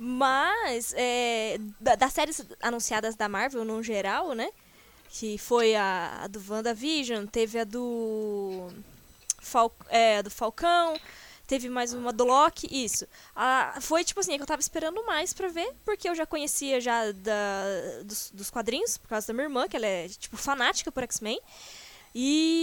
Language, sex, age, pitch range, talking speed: Portuguese, female, 10-29, 235-345 Hz, 170 wpm